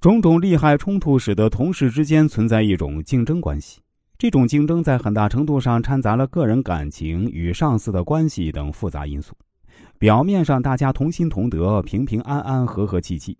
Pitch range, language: 85-130 Hz, Chinese